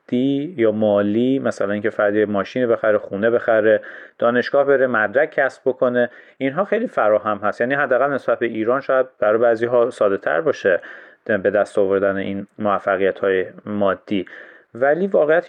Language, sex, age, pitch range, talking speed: Persian, male, 30-49, 110-145 Hz, 150 wpm